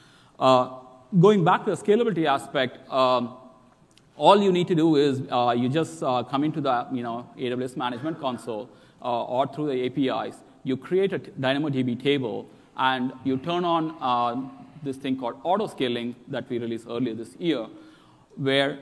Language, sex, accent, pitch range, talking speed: English, male, Indian, 125-155 Hz, 170 wpm